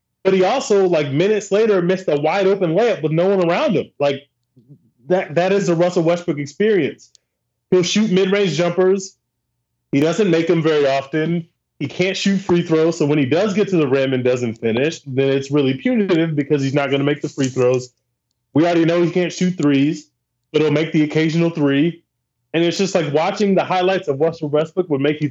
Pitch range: 135-180 Hz